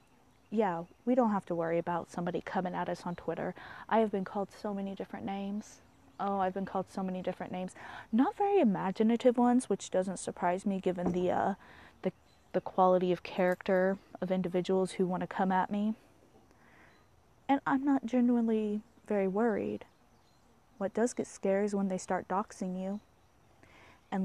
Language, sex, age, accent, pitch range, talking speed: English, female, 20-39, American, 180-205 Hz, 175 wpm